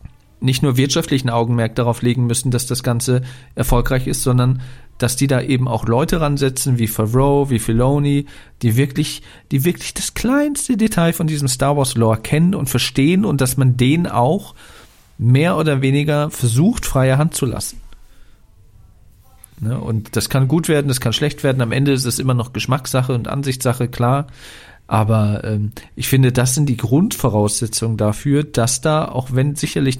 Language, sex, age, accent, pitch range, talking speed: German, male, 40-59, German, 115-140 Hz, 165 wpm